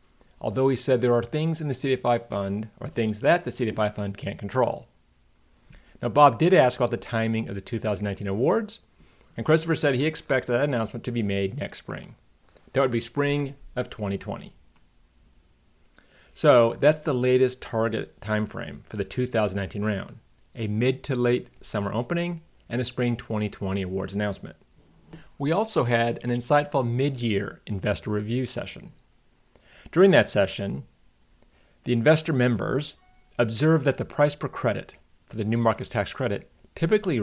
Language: English